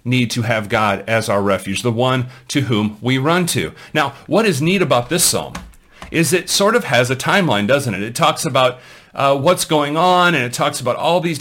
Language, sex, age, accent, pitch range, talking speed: English, male, 40-59, American, 110-150 Hz, 225 wpm